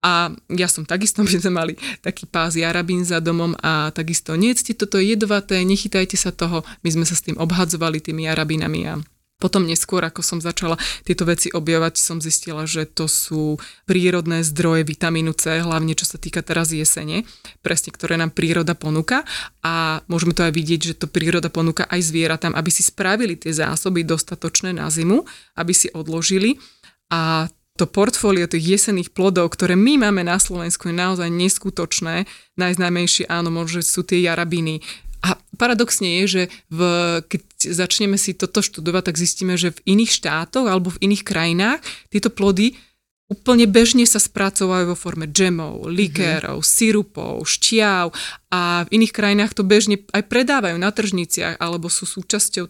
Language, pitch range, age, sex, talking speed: Slovak, 165-190 Hz, 20-39, female, 165 wpm